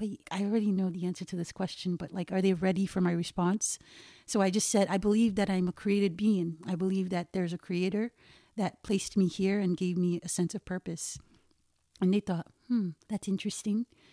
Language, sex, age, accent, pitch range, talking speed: English, female, 40-59, American, 175-205 Hz, 210 wpm